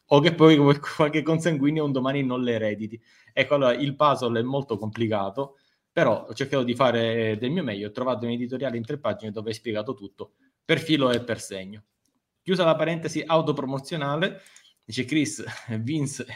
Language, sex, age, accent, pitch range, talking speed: Italian, male, 20-39, native, 110-135 Hz, 175 wpm